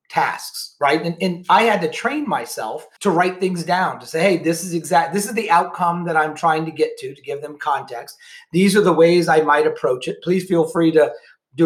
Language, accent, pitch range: English, American, 155-195 Hz